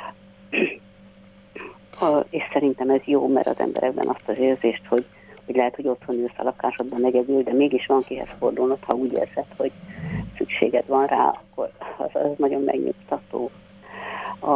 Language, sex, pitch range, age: Hungarian, female, 135-155 Hz, 60-79